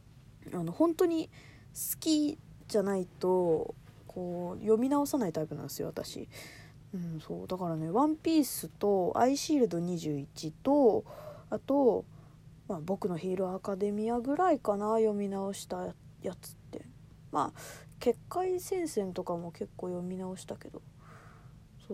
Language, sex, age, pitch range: Japanese, female, 20-39, 155-250 Hz